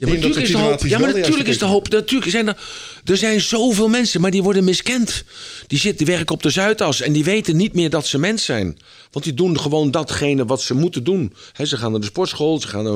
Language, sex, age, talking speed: Dutch, male, 50-69, 240 wpm